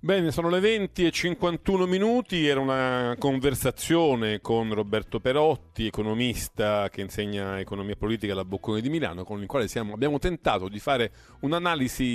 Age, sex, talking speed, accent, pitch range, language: 40-59, male, 155 wpm, native, 105-140 Hz, Italian